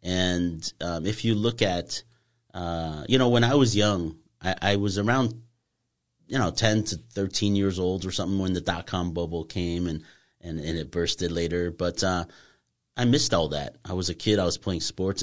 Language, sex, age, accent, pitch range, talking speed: English, male, 30-49, American, 85-110 Hz, 200 wpm